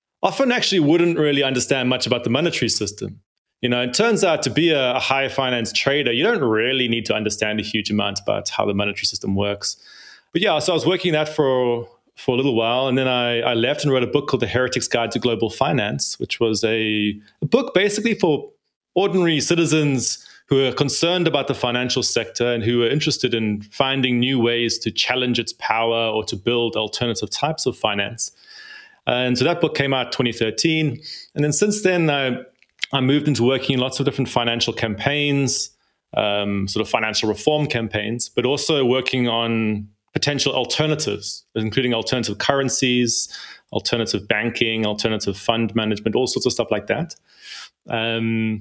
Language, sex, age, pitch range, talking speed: English, male, 20-39, 110-140 Hz, 185 wpm